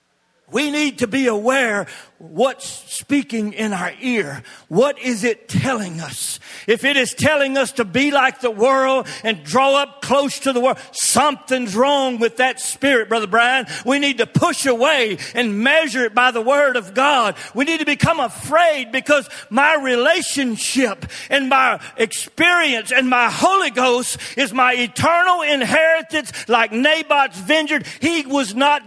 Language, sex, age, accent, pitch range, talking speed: English, male, 40-59, American, 195-275 Hz, 160 wpm